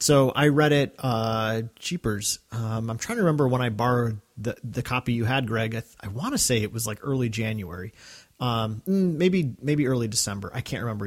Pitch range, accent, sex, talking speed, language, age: 115-145 Hz, American, male, 210 wpm, English, 30-49